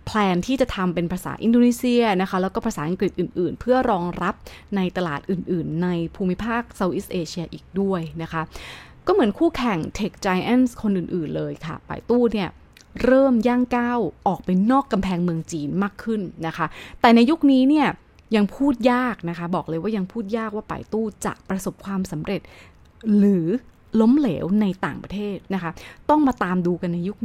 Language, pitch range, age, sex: Thai, 175-230 Hz, 20-39, female